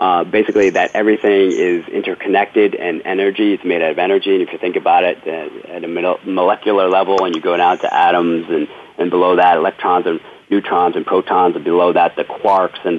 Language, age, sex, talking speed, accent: English, 40-59, male, 210 wpm, American